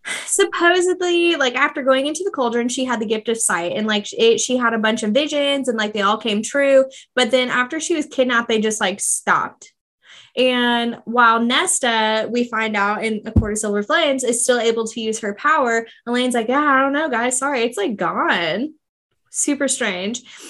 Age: 10-29